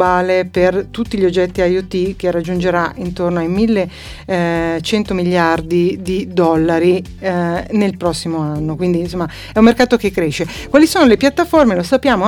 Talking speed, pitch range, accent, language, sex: 140 wpm, 180-235 Hz, native, Italian, female